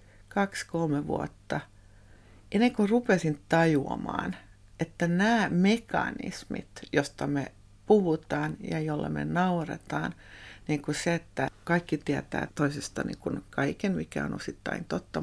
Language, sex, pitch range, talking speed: Finnish, female, 140-195 Hz, 115 wpm